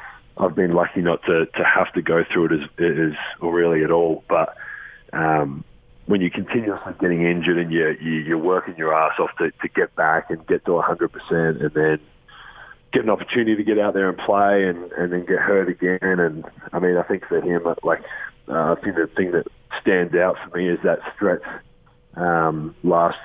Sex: male